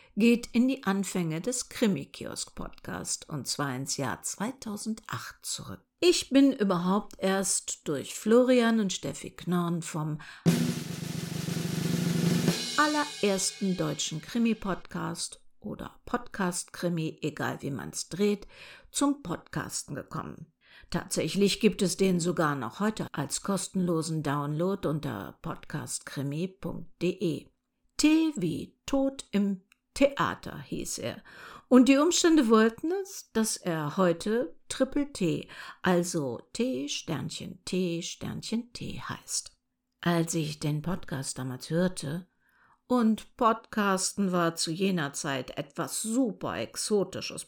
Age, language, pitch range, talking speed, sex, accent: 50-69, German, 165-235 Hz, 105 wpm, female, German